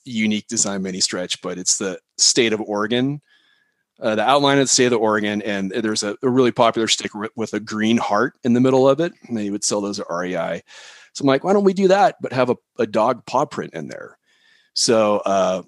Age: 30-49